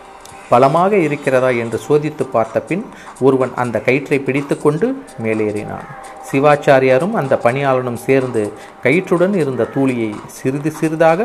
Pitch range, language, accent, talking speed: 120-155 Hz, Tamil, native, 110 wpm